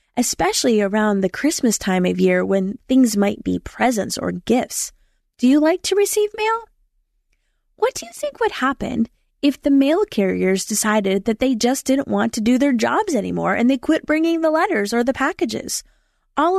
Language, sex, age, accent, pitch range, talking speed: English, female, 20-39, American, 220-295 Hz, 185 wpm